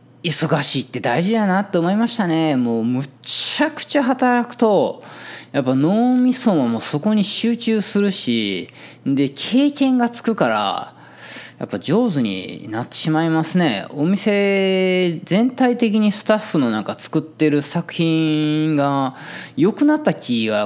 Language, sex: Japanese, male